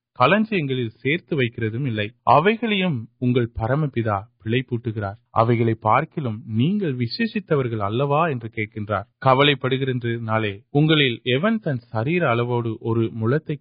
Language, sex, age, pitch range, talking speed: Urdu, male, 30-49, 115-150 Hz, 55 wpm